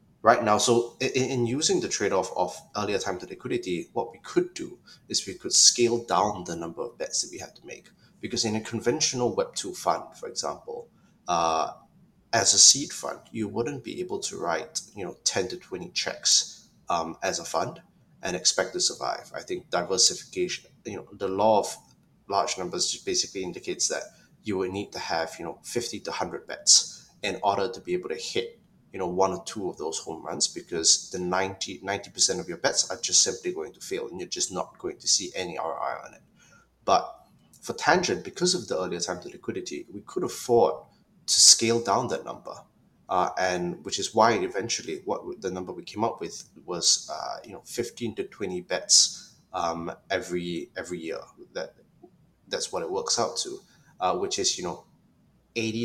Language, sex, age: Chinese, male, 20-39